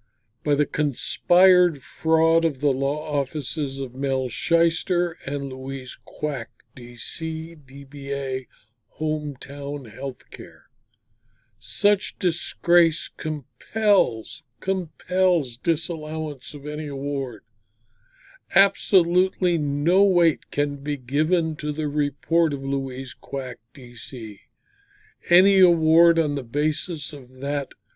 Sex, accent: male, American